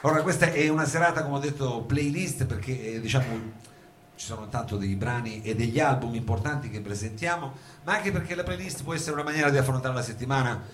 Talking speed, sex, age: 205 wpm, male, 40-59